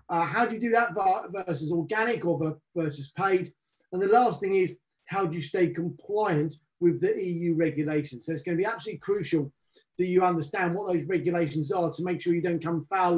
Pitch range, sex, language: 170-225 Hz, male, English